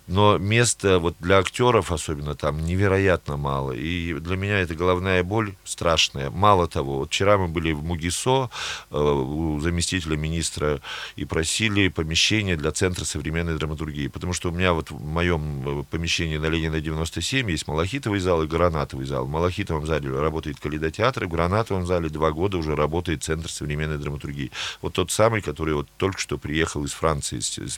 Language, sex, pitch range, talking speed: Russian, male, 80-100 Hz, 170 wpm